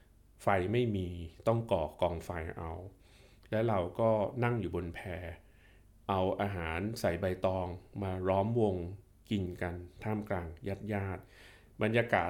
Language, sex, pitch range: Thai, male, 90-110 Hz